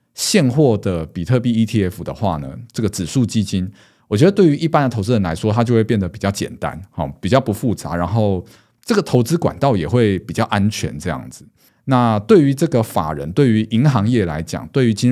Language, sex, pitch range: Chinese, male, 100-130 Hz